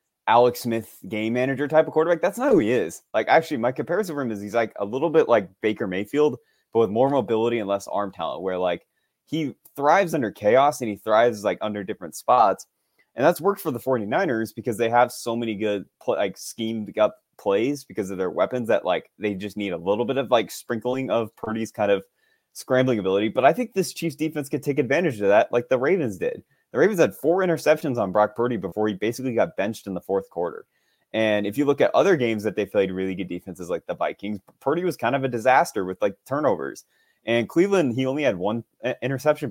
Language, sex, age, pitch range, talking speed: English, male, 20-39, 110-155 Hz, 225 wpm